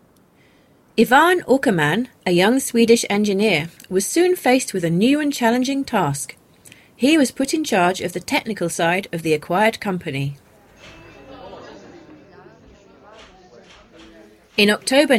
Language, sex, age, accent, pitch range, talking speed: English, female, 30-49, British, 175-260 Hz, 120 wpm